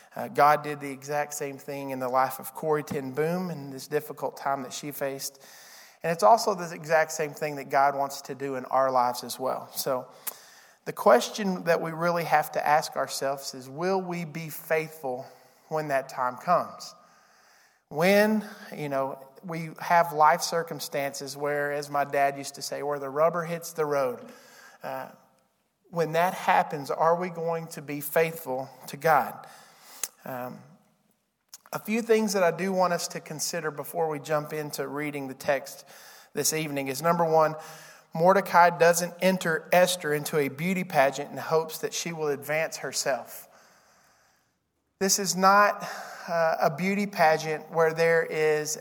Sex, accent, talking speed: male, American, 170 wpm